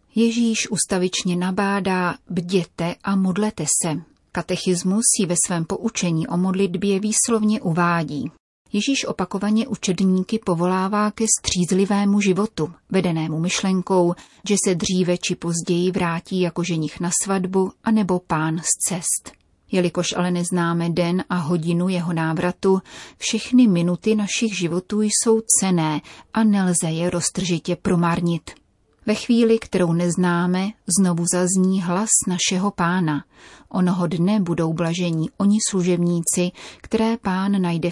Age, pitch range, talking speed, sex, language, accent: 30-49, 175-200 Hz, 120 wpm, female, Czech, native